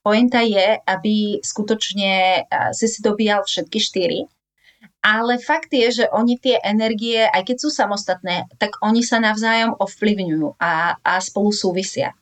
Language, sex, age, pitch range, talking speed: Slovak, female, 30-49, 190-230 Hz, 140 wpm